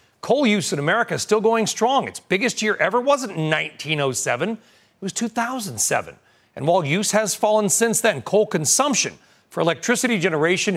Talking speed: 160 wpm